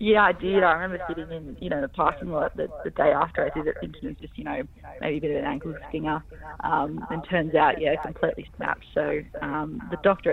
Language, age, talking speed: English, 20-39, 245 wpm